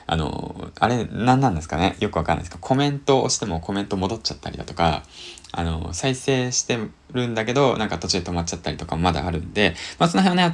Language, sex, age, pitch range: Japanese, male, 20-39, 85-130 Hz